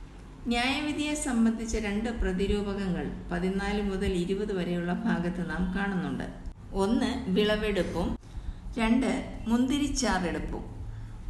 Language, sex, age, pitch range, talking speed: Malayalam, female, 50-69, 185-230 Hz, 80 wpm